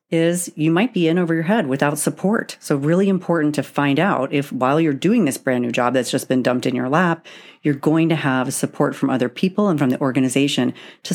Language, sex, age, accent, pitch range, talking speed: English, female, 40-59, American, 140-175 Hz, 235 wpm